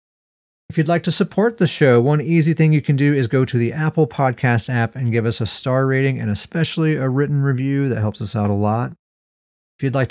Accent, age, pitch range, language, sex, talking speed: American, 30-49, 110-140 Hz, English, male, 235 wpm